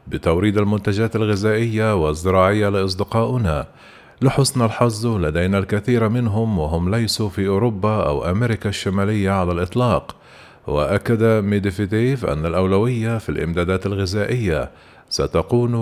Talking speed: 100 wpm